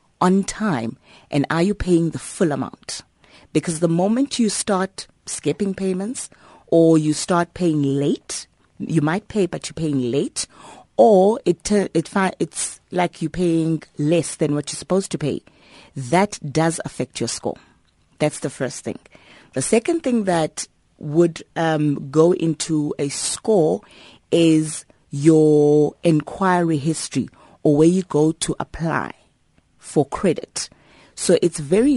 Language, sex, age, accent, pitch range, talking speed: English, female, 30-49, South African, 145-180 Hz, 145 wpm